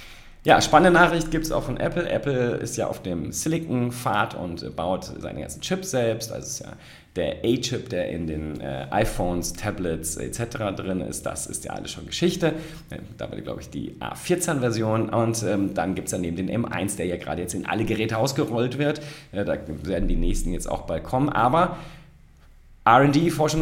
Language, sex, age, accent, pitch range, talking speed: German, male, 30-49, German, 90-120 Hz, 200 wpm